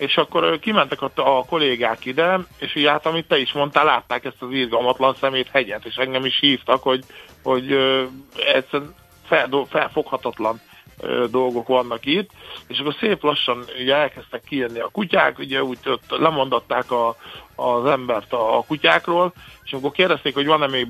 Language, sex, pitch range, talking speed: Hungarian, male, 125-145 Hz, 155 wpm